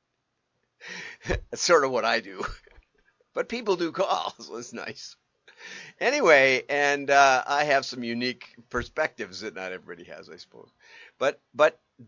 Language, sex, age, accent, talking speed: English, male, 50-69, American, 145 wpm